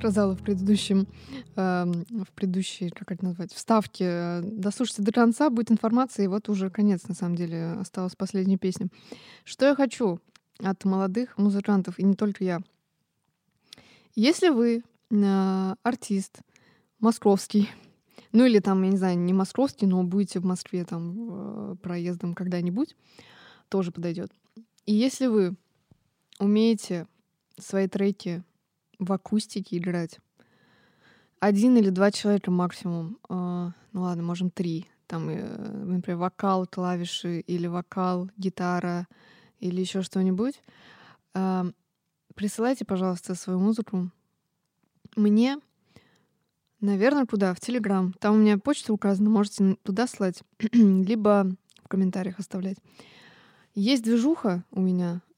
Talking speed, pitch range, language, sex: 120 wpm, 180-215 Hz, Russian, female